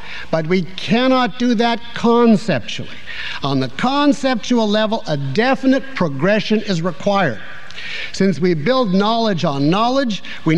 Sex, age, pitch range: male, 60-79, 175-235 Hz